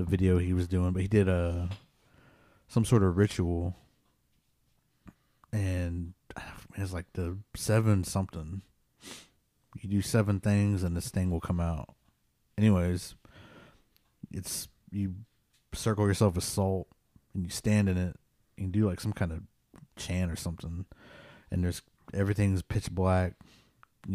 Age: 30-49